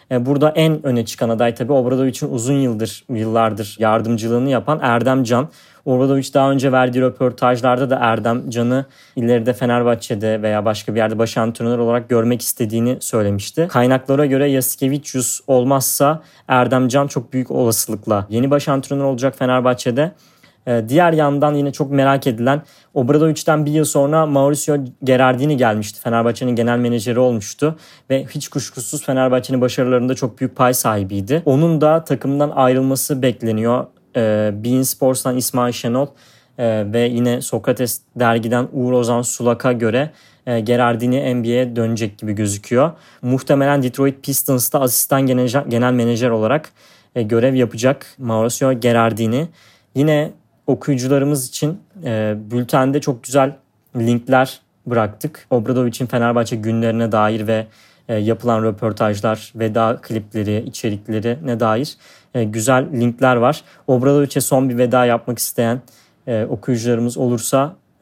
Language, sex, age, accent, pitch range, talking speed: Turkish, male, 30-49, native, 115-135 Hz, 125 wpm